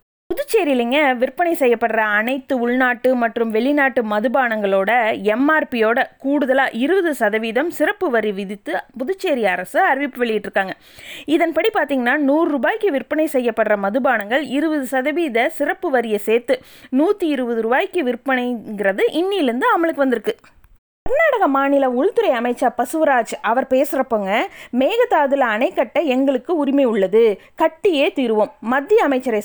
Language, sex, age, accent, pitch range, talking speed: Tamil, female, 20-39, native, 230-310 Hz, 110 wpm